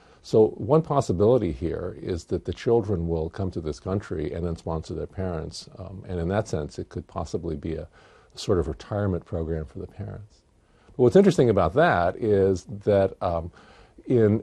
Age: 50-69